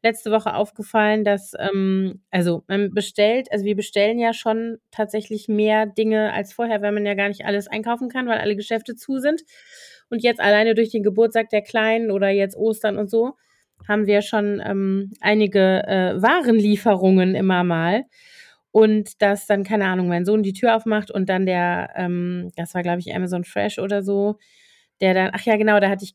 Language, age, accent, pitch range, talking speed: German, 30-49, German, 205-240 Hz, 190 wpm